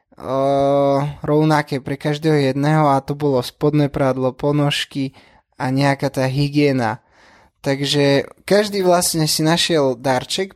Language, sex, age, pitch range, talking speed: Slovak, male, 20-39, 140-160 Hz, 120 wpm